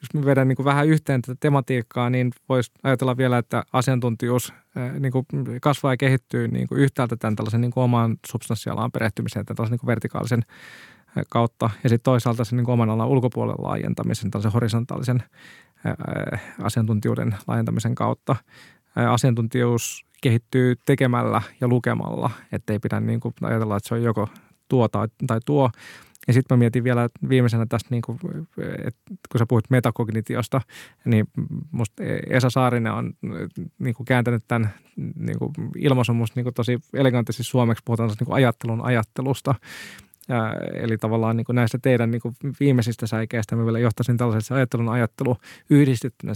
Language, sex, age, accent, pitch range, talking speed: Finnish, male, 20-39, native, 115-130 Hz, 130 wpm